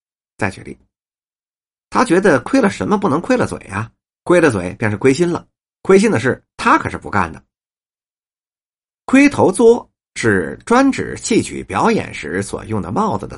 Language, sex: Chinese, male